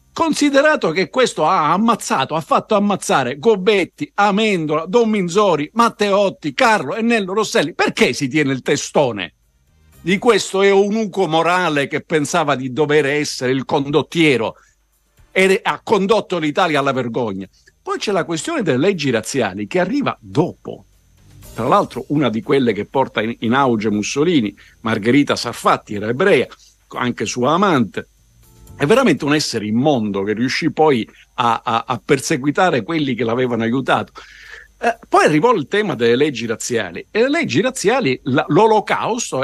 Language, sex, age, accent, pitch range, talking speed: Italian, male, 50-69, native, 120-200 Hz, 145 wpm